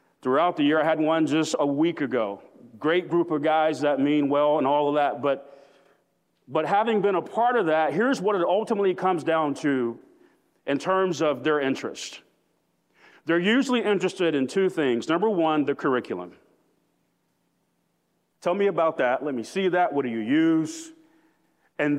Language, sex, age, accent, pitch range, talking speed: English, male, 40-59, American, 150-210 Hz, 175 wpm